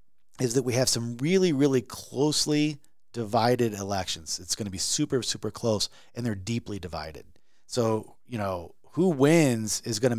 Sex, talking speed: male, 170 wpm